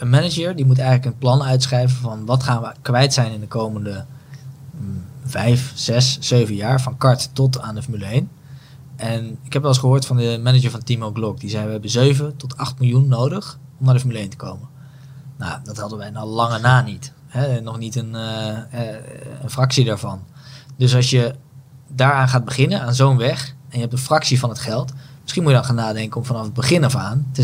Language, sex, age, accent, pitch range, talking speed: Dutch, male, 20-39, Dutch, 115-135 Hz, 220 wpm